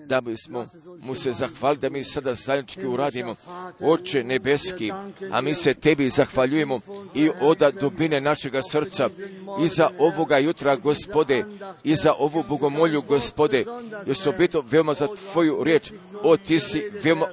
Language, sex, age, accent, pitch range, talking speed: Croatian, male, 50-69, native, 150-190 Hz, 155 wpm